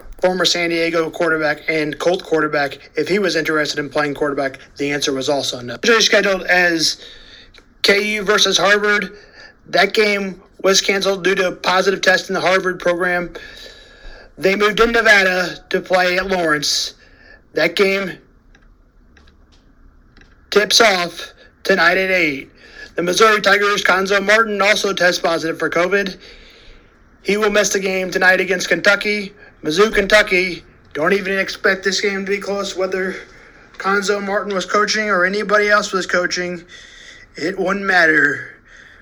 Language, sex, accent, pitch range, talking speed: English, male, American, 165-200 Hz, 145 wpm